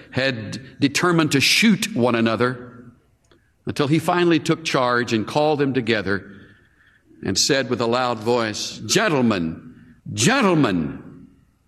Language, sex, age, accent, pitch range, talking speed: English, male, 60-79, American, 110-165 Hz, 120 wpm